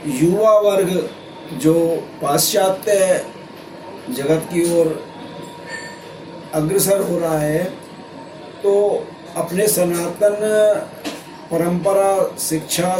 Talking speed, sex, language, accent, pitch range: 75 wpm, male, Hindi, native, 170-230 Hz